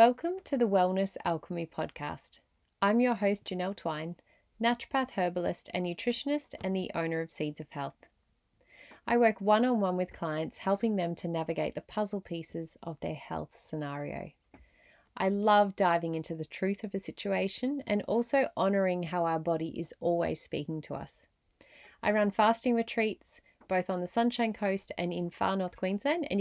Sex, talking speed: female, 165 wpm